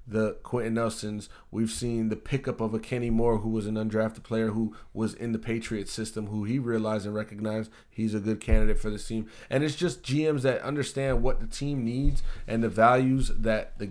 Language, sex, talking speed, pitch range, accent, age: English, male, 210 wpm, 110-135 Hz, American, 30-49